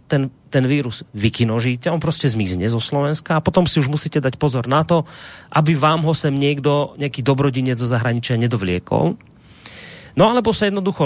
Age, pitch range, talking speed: 30-49, 115-145 Hz, 175 wpm